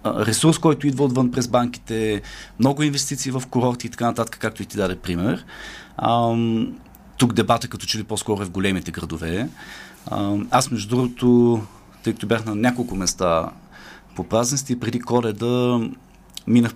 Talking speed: 160 wpm